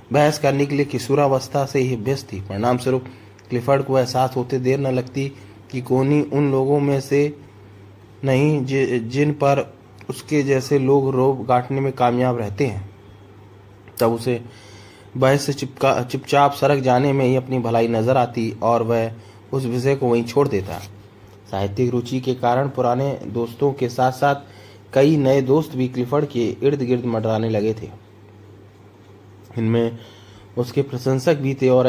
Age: 20-39